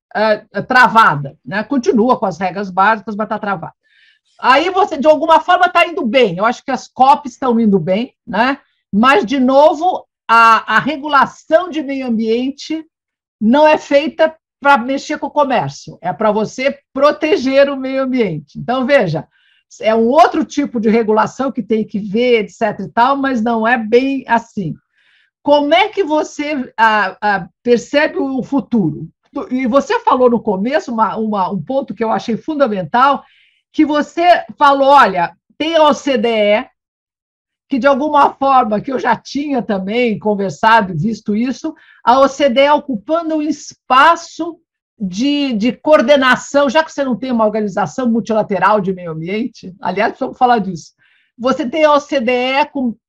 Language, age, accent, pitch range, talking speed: Portuguese, 50-69, Brazilian, 220-285 Hz, 155 wpm